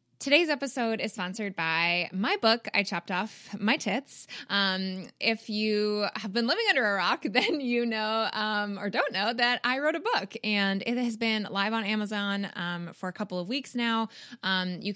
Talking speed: 195 wpm